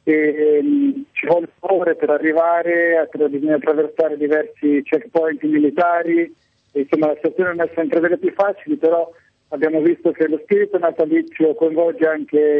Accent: native